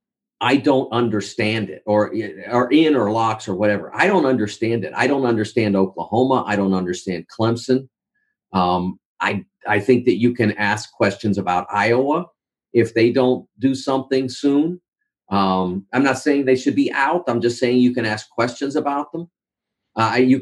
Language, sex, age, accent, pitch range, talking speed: English, male, 40-59, American, 105-130 Hz, 175 wpm